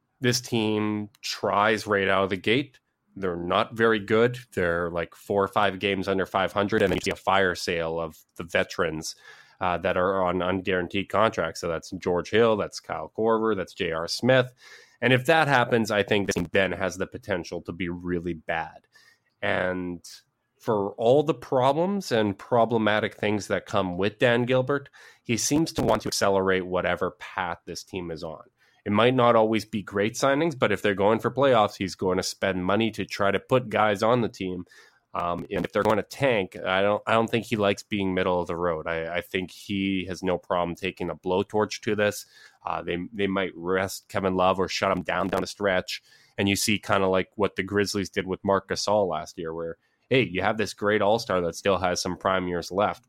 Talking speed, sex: 210 wpm, male